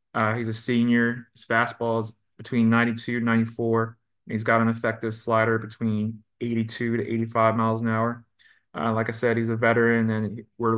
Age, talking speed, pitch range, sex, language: 20-39, 180 wpm, 110-130 Hz, male, English